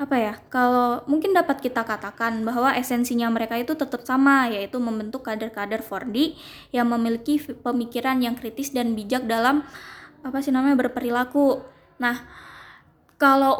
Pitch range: 240-275 Hz